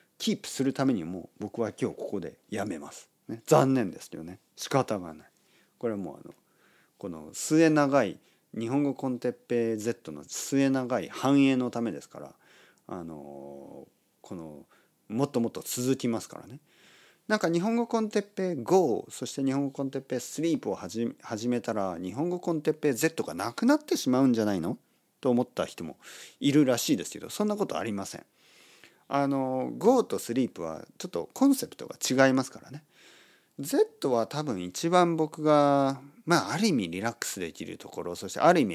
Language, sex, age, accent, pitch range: Japanese, male, 40-59, native, 120-175 Hz